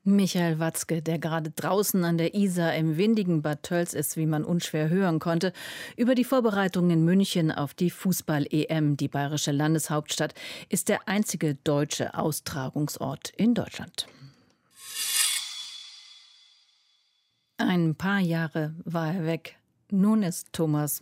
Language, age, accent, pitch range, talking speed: German, 40-59, German, 155-185 Hz, 130 wpm